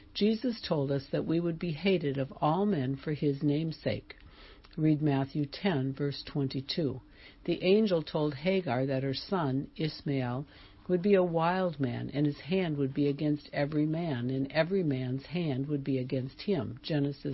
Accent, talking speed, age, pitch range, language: American, 170 wpm, 60-79, 135-180 Hz, English